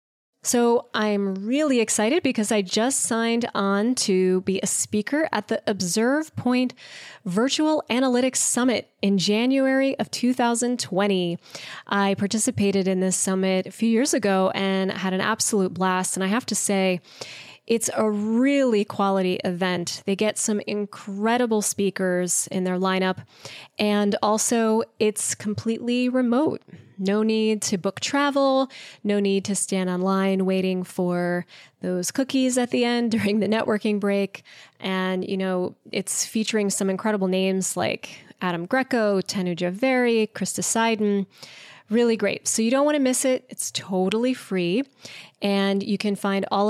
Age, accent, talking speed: 20-39, American, 145 wpm